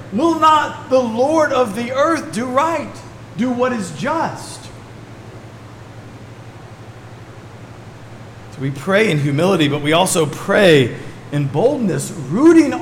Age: 40-59